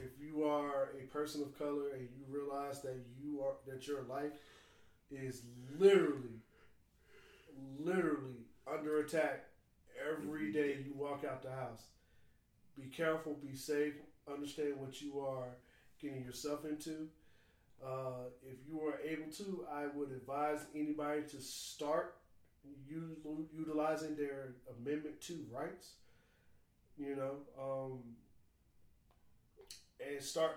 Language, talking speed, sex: English, 120 wpm, male